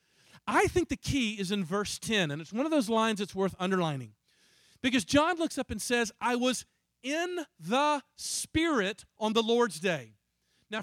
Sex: male